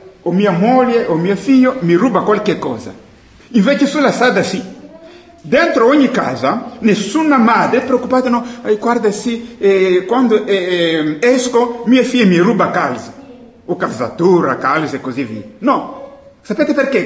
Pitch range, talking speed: 195-265 Hz, 155 wpm